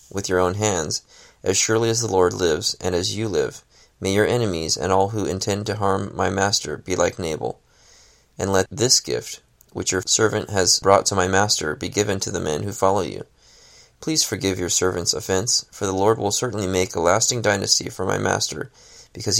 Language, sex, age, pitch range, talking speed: English, male, 20-39, 95-105 Hz, 205 wpm